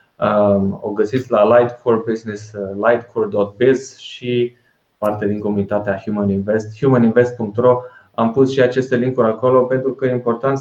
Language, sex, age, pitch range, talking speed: Romanian, male, 20-39, 105-125 Hz, 130 wpm